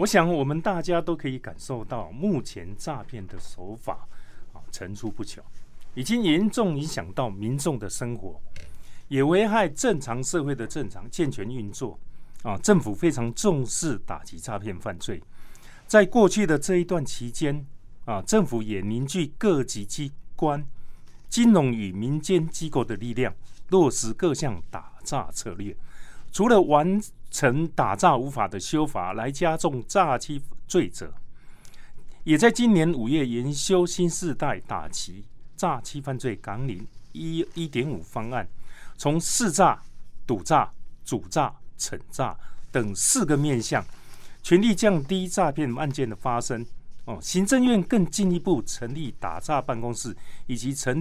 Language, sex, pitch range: Chinese, male, 115-170 Hz